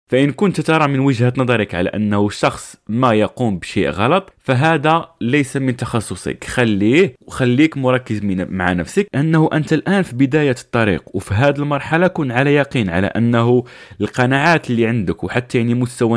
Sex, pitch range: male, 110-145 Hz